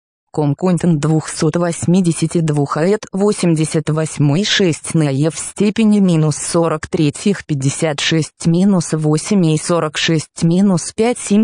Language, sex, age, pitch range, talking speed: English, female, 20-39, 150-205 Hz, 90 wpm